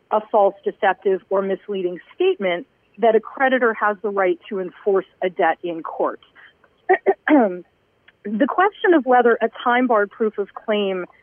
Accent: American